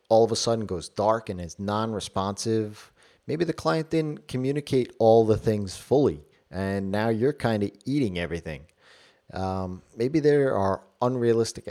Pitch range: 95-125 Hz